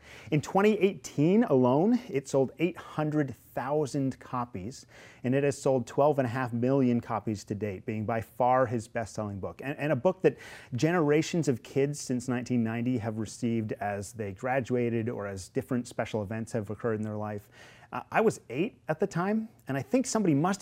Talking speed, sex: 170 wpm, male